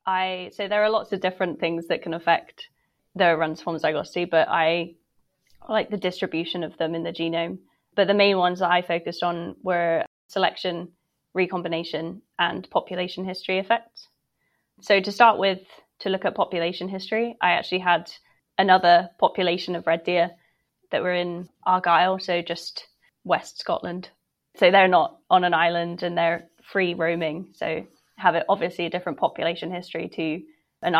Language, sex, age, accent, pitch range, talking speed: English, female, 10-29, British, 170-195 Hz, 165 wpm